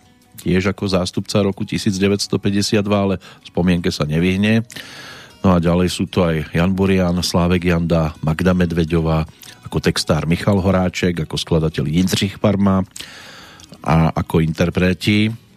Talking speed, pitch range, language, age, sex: 125 wpm, 85-105 Hz, Slovak, 40-59, male